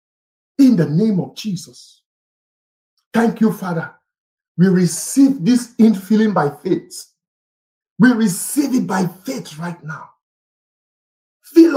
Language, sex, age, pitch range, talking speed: English, male, 50-69, 145-215 Hz, 110 wpm